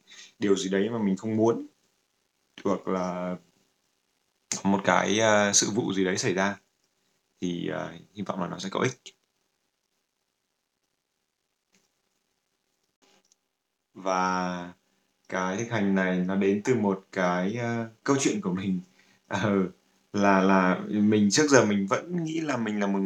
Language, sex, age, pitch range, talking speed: Vietnamese, male, 20-39, 90-105 Hz, 145 wpm